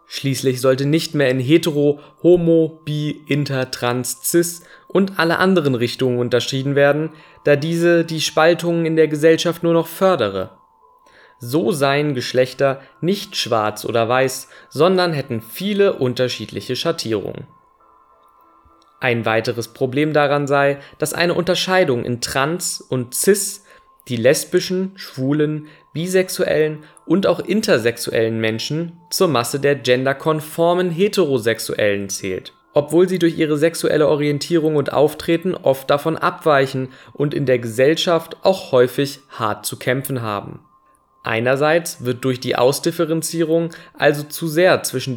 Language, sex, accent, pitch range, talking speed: German, male, German, 130-170 Hz, 125 wpm